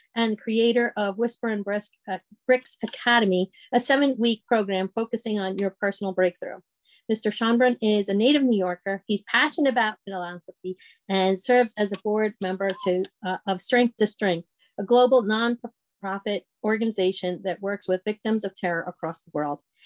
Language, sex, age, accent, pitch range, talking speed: English, female, 40-59, American, 195-235 Hz, 160 wpm